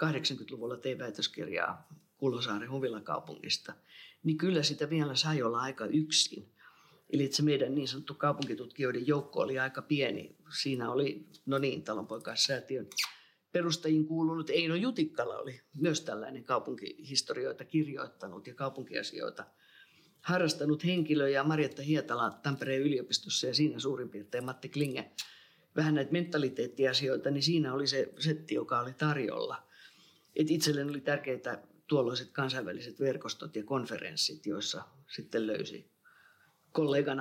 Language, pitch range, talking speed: Finnish, 130-160 Hz, 125 wpm